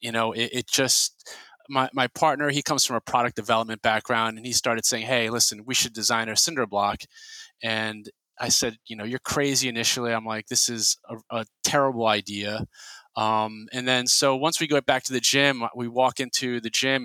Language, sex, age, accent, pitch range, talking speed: English, male, 30-49, American, 110-130 Hz, 210 wpm